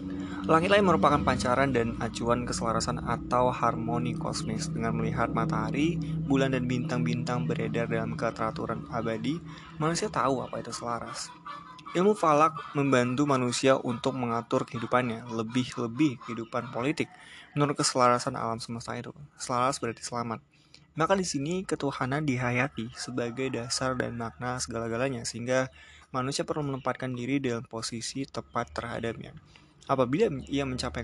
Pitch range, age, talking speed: 115-140 Hz, 20-39, 125 wpm